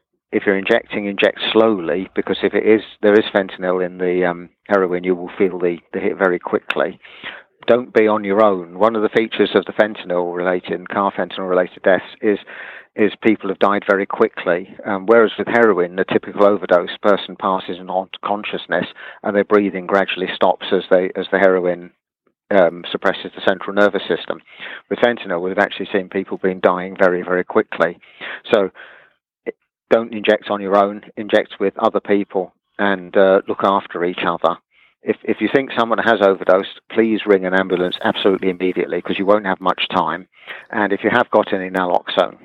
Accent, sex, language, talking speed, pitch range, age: British, male, English, 180 wpm, 90-105 Hz, 40-59